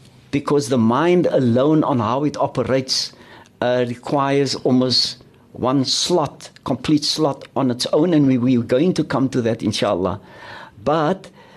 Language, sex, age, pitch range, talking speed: English, male, 60-79, 125-165 Hz, 150 wpm